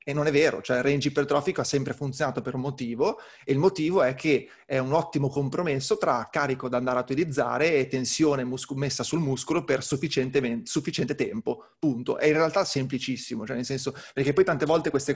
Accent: native